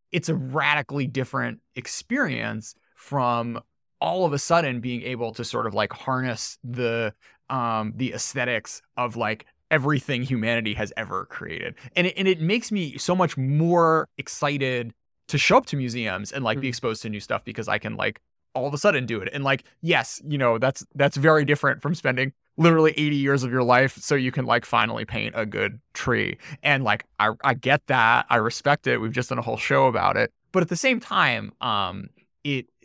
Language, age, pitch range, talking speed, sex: English, 20-39, 120-155 Hz, 200 wpm, male